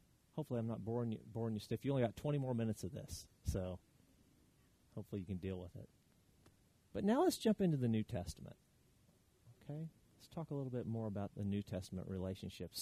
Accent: American